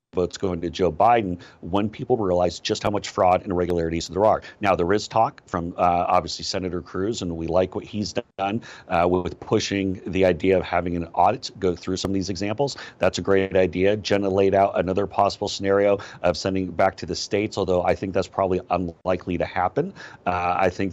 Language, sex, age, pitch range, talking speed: English, male, 40-59, 90-105 Hz, 210 wpm